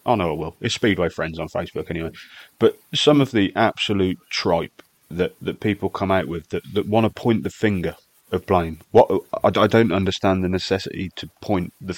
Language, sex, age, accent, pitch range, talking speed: English, male, 30-49, British, 90-105 Hz, 205 wpm